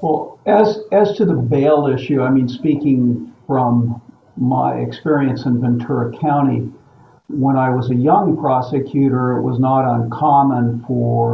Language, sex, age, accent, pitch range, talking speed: English, male, 50-69, American, 120-140 Hz, 145 wpm